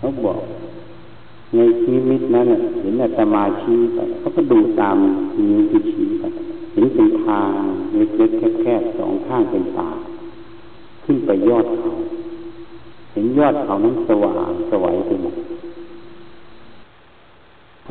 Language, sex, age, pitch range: Thai, male, 60-79, 320-340 Hz